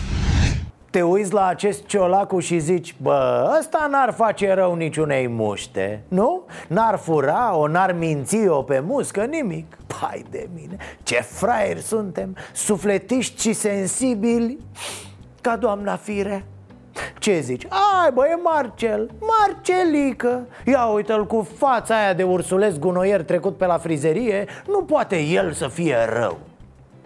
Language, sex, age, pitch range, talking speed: Romanian, male, 30-49, 160-225 Hz, 135 wpm